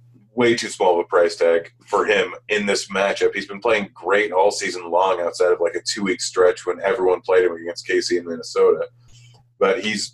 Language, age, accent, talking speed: English, 30-49, American, 205 wpm